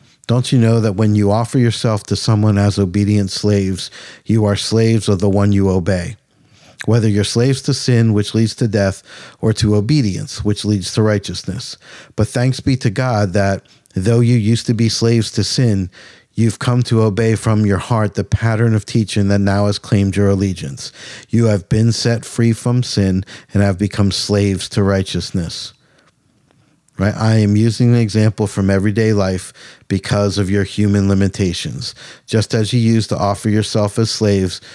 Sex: male